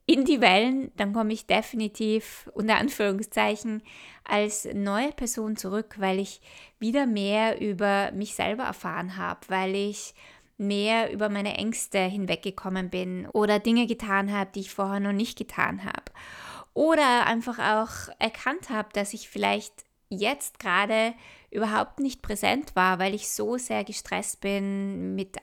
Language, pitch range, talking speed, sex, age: German, 195-225 Hz, 145 wpm, female, 20-39